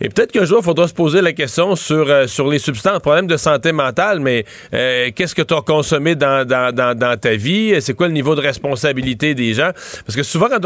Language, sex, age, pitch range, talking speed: French, male, 40-59, 140-170 Hz, 255 wpm